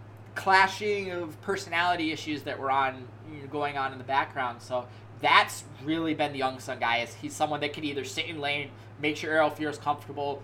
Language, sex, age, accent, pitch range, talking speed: English, male, 20-39, American, 125-165 Hz, 200 wpm